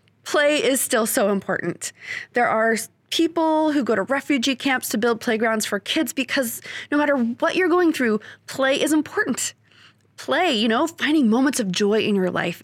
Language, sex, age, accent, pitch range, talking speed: English, female, 20-39, American, 200-270 Hz, 180 wpm